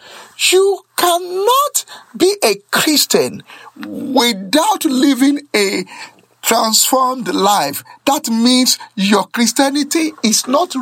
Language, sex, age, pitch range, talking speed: English, male, 50-69, 245-375 Hz, 90 wpm